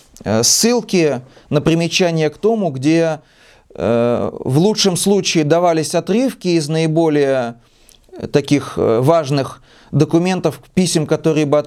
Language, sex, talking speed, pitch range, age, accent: Russian, male, 95 wpm, 145-180 Hz, 30-49, native